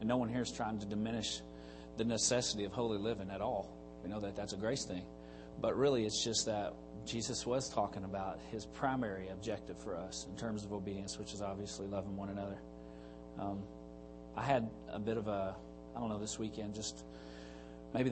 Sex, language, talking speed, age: male, English, 200 wpm, 40-59